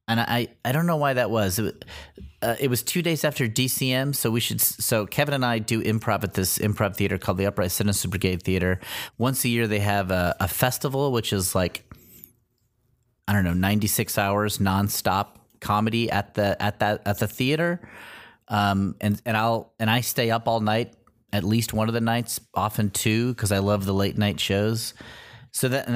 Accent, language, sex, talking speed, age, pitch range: American, English, male, 205 wpm, 30-49, 100-120 Hz